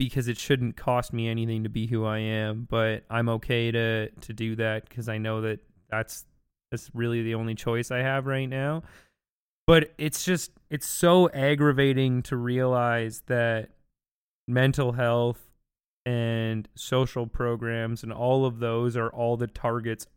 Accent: American